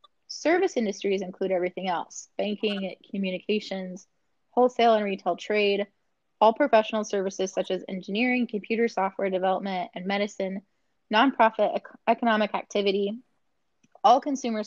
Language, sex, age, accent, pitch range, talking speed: English, female, 20-39, American, 180-220 Hz, 110 wpm